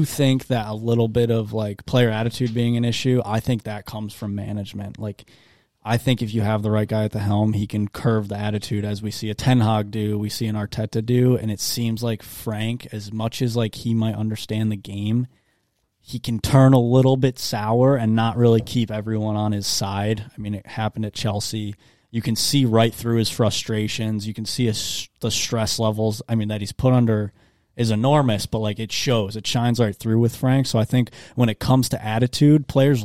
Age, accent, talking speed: 20-39, American, 225 wpm